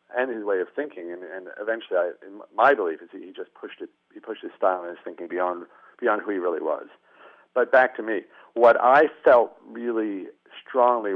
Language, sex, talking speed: English, male, 210 wpm